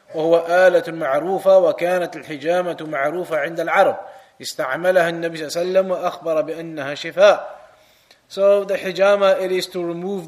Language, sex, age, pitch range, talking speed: English, male, 20-39, 165-195 Hz, 90 wpm